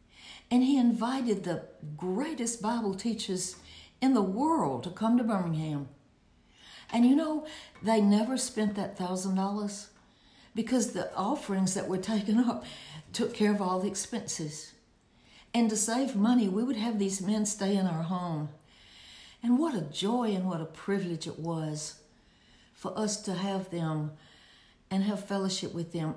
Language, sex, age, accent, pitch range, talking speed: English, female, 60-79, American, 175-230 Hz, 155 wpm